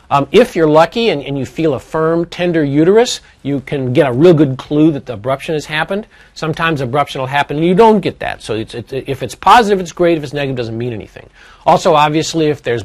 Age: 50-69